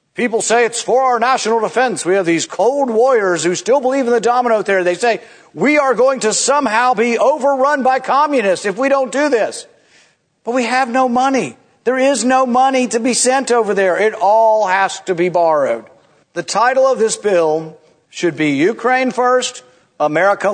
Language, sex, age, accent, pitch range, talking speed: English, male, 50-69, American, 215-265 Hz, 190 wpm